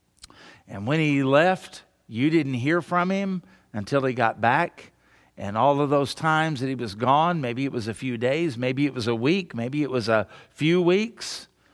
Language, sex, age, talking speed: English, male, 50-69, 200 wpm